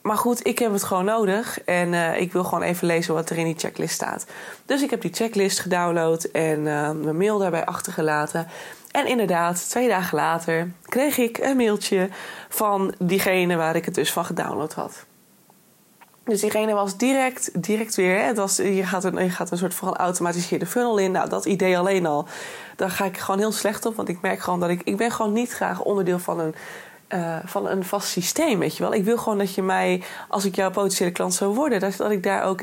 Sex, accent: female, Dutch